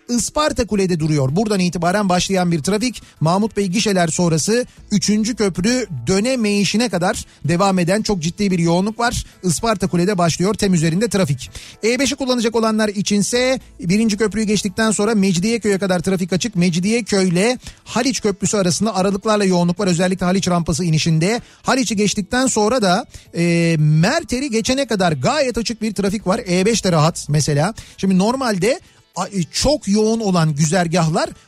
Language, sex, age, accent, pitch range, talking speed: Turkish, male, 40-59, native, 170-220 Hz, 145 wpm